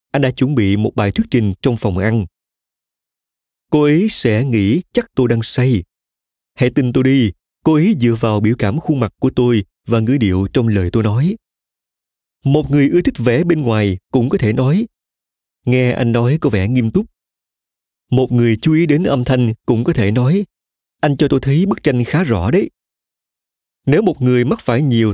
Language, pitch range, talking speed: Vietnamese, 105-140 Hz, 200 wpm